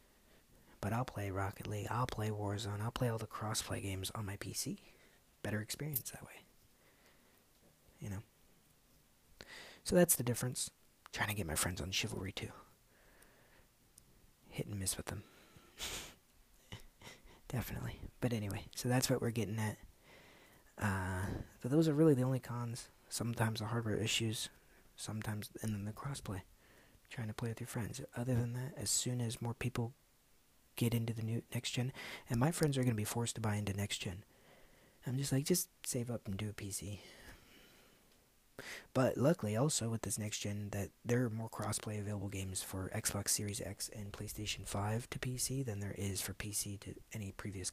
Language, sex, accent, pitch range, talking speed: English, male, American, 100-120 Hz, 175 wpm